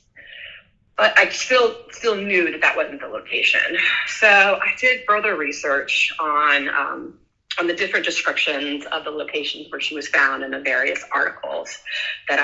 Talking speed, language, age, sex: 160 wpm, English, 30-49, female